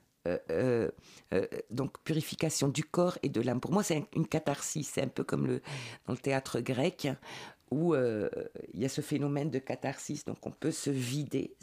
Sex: female